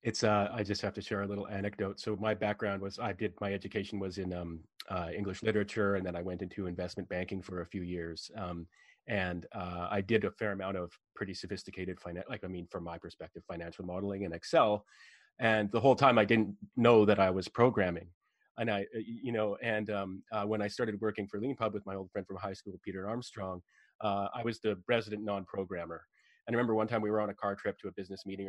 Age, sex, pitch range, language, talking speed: 30-49, male, 95-110 Hz, English, 235 wpm